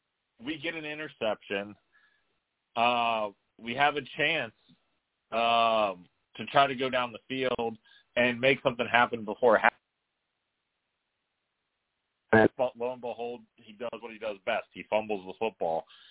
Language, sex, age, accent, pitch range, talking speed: English, male, 30-49, American, 105-135 Hz, 140 wpm